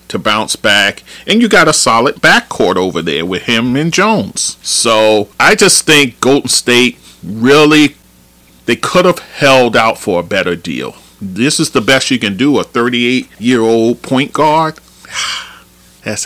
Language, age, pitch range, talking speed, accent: English, 40-59, 90-130 Hz, 165 wpm, American